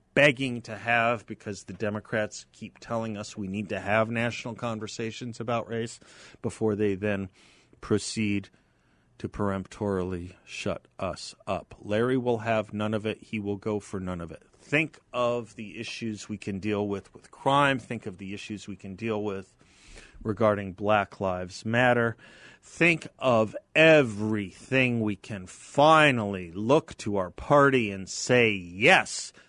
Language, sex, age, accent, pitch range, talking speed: English, male, 40-59, American, 105-130 Hz, 150 wpm